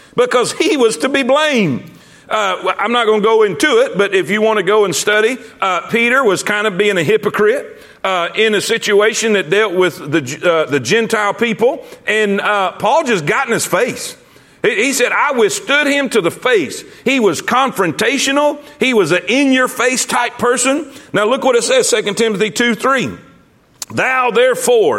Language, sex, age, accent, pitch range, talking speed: English, male, 40-59, American, 195-270 Hz, 190 wpm